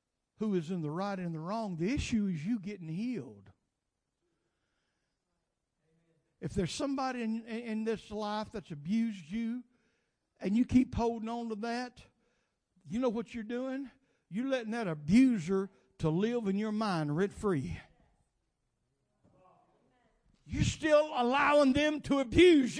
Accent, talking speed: American, 140 wpm